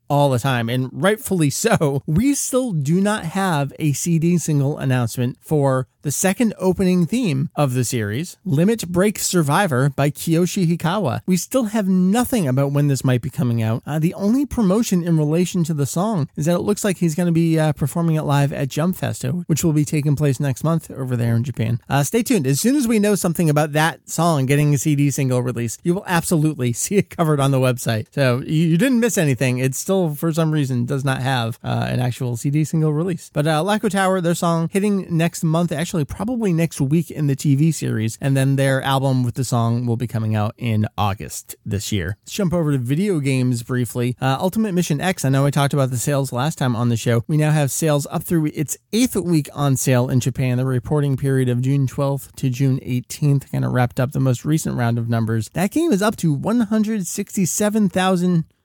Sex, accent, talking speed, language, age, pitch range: male, American, 220 wpm, English, 30-49, 130-180 Hz